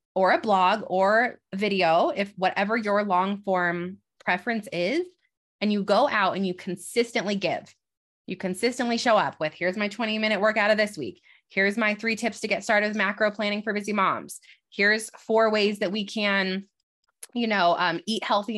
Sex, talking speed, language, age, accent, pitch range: female, 185 wpm, English, 20-39, American, 190-230 Hz